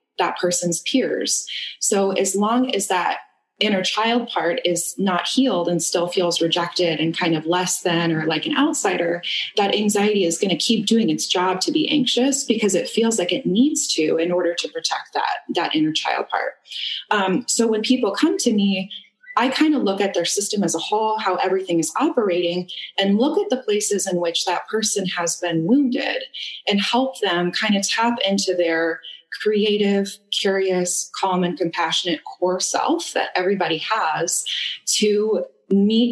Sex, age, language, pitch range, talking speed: female, 20-39, English, 175-240 Hz, 180 wpm